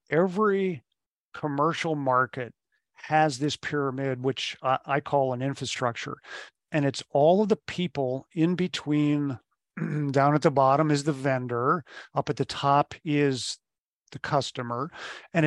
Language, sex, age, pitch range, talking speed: English, male, 50-69, 135-165 Hz, 130 wpm